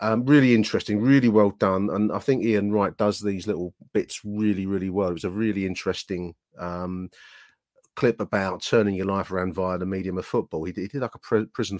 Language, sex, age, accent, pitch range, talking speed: English, male, 30-49, British, 90-105 Hz, 215 wpm